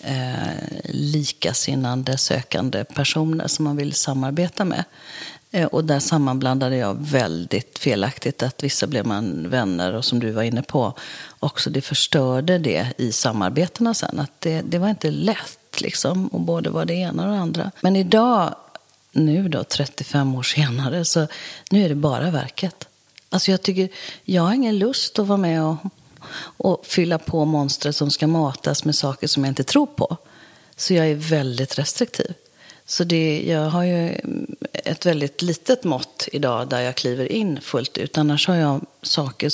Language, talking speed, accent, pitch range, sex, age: Swedish, 170 wpm, native, 140-180 Hz, female, 40-59